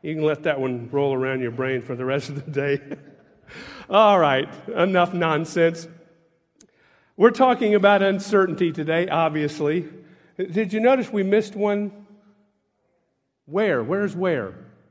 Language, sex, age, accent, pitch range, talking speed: English, male, 50-69, American, 145-200 Hz, 135 wpm